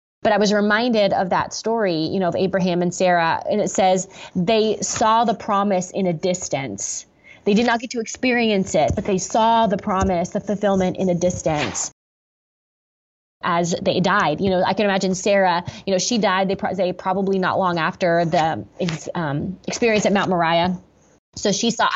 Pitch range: 180-210 Hz